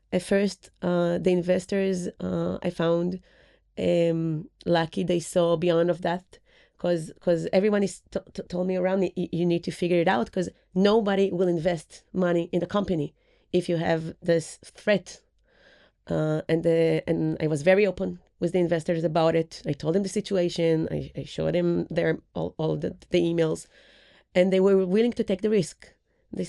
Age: 30-49